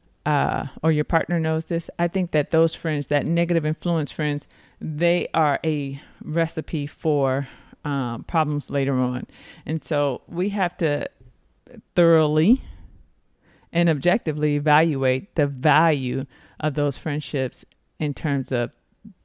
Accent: American